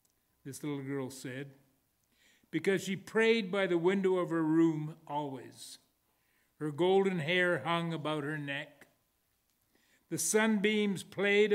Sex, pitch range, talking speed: male, 145-195 Hz, 125 wpm